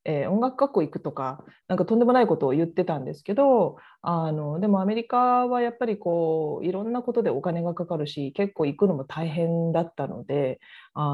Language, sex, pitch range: Japanese, female, 155-230 Hz